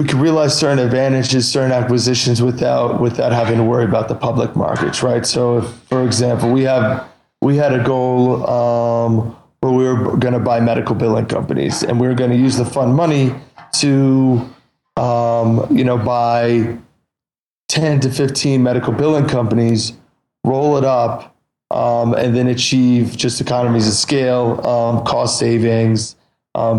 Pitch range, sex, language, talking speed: 115-125 Hz, male, English, 160 wpm